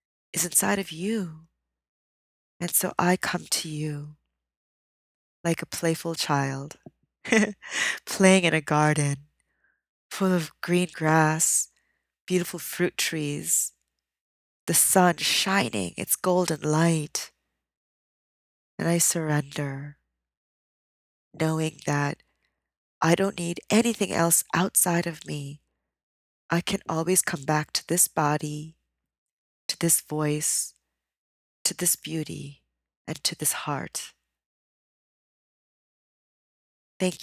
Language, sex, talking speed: English, female, 100 wpm